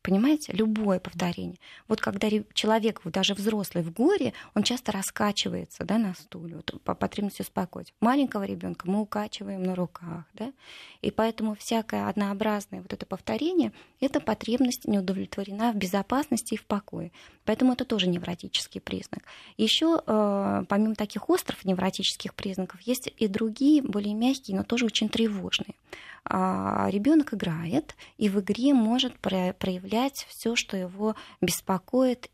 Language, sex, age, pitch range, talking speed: Russian, female, 20-39, 185-225 Hz, 140 wpm